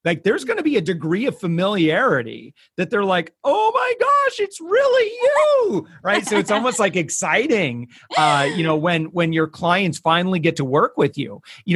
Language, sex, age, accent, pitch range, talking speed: English, male, 40-59, American, 145-180 Hz, 195 wpm